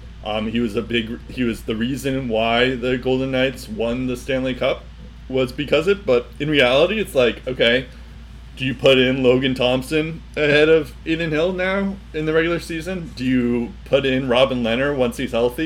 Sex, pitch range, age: male, 110-135 Hz, 20-39